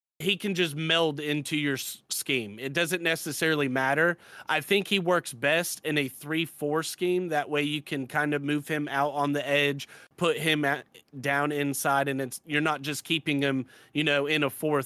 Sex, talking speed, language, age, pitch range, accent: male, 200 wpm, English, 30-49, 140-170 Hz, American